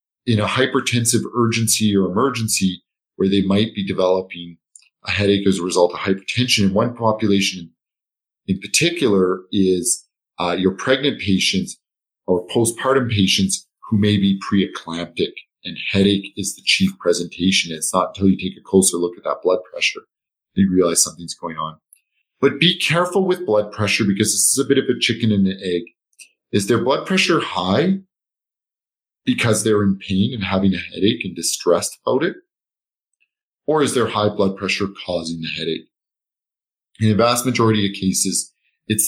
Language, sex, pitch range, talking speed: English, male, 90-115 Hz, 165 wpm